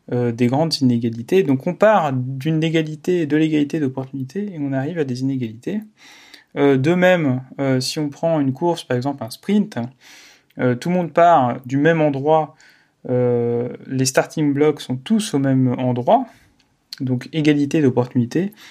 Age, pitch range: 30-49, 125-155 Hz